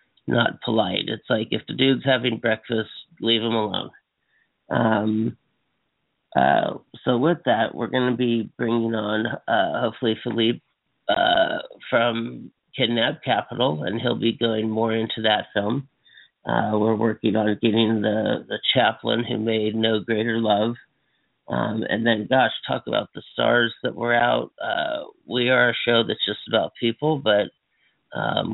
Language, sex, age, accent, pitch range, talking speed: English, male, 40-59, American, 110-115 Hz, 155 wpm